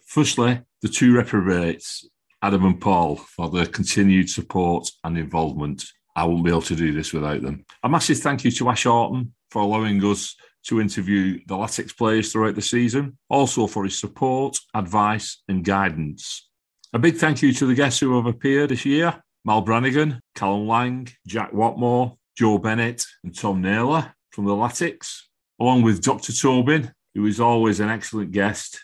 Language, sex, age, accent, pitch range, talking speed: English, male, 40-59, British, 100-125 Hz, 175 wpm